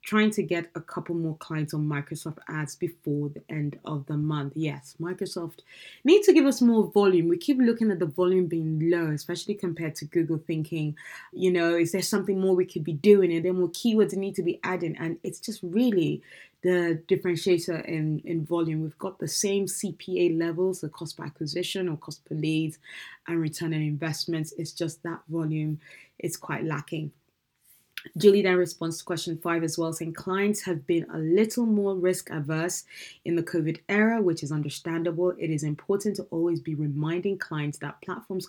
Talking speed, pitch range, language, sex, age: 190 wpm, 155-180 Hz, English, female, 20-39